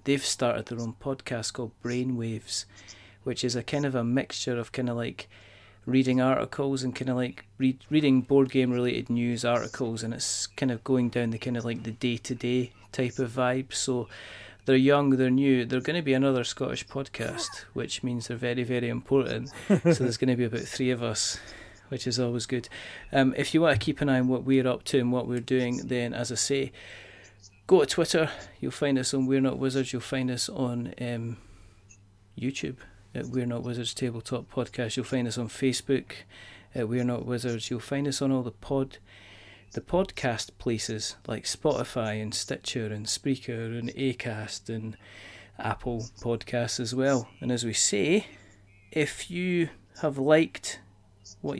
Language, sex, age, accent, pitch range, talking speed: English, male, 30-49, British, 110-130 Hz, 185 wpm